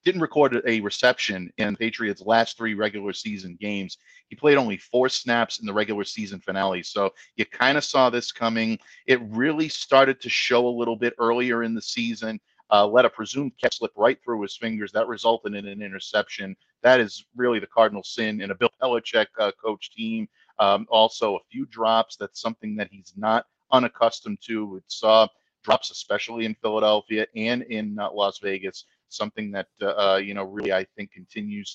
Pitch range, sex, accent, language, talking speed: 105-125 Hz, male, American, English, 190 wpm